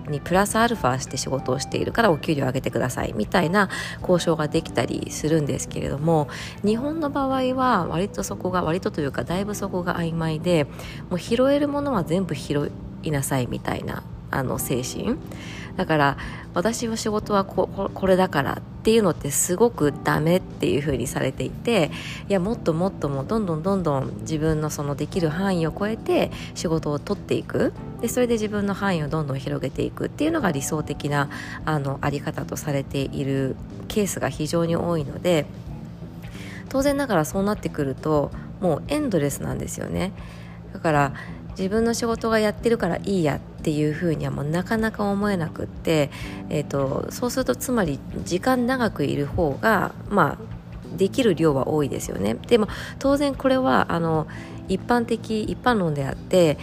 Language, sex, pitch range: Japanese, female, 145-215 Hz